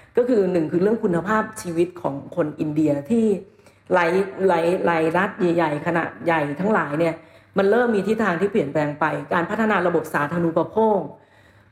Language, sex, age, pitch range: Thai, female, 40-59, 160-205 Hz